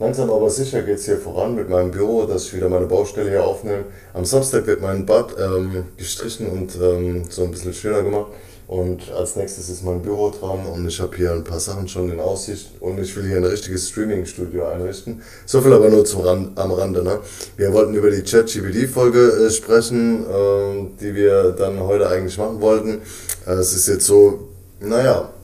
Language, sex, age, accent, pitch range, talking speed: German, male, 20-39, German, 90-120 Hz, 205 wpm